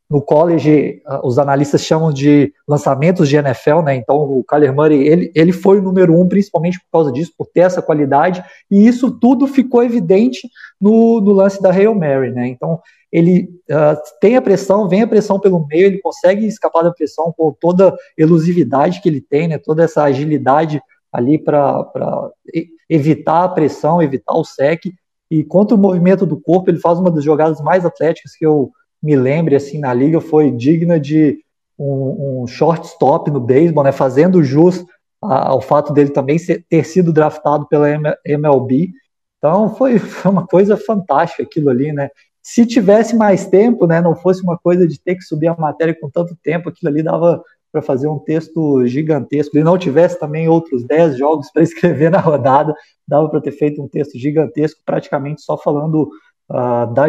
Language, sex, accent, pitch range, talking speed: Portuguese, male, Brazilian, 145-180 Hz, 185 wpm